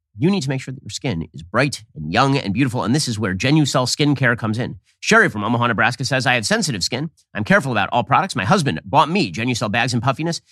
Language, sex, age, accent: English, male, 40-59, American